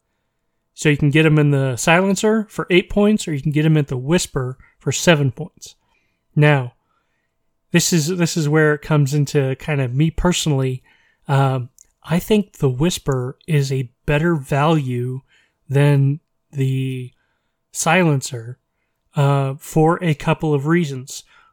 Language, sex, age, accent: English, male, 30-49, American